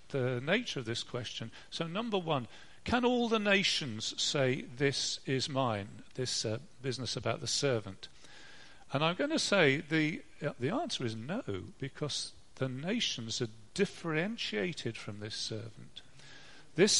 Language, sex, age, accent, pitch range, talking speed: English, male, 40-59, British, 125-160 Hz, 150 wpm